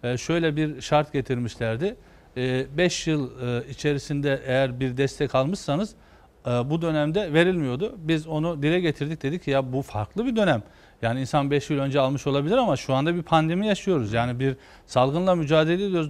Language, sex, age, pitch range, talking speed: Turkish, male, 40-59, 135-170 Hz, 160 wpm